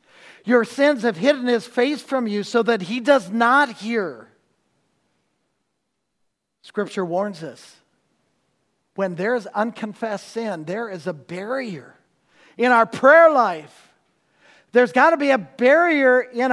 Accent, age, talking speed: American, 50-69, 135 wpm